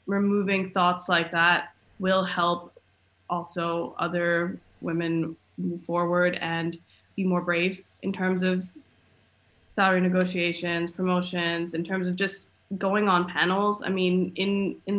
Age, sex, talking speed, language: 20-39, female, 130 wpm, English